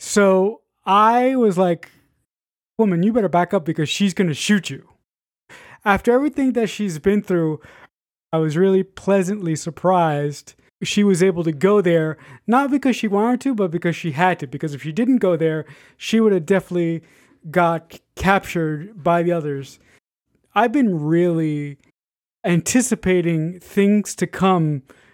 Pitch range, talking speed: 160-200 Hz, 155 wpm